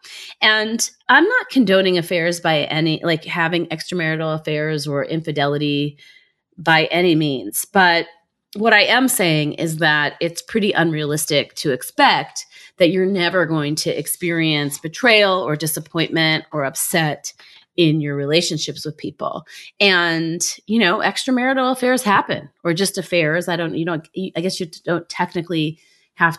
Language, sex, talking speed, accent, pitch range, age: English, female, 145 wpm, American, 155-185 Hz, 30-49